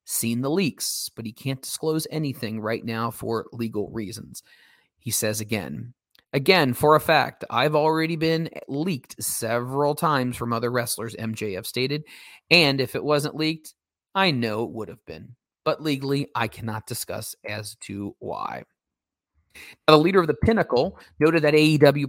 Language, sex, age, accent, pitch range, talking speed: English, male, 30-49, American, 115-150 Hz, 160 wpm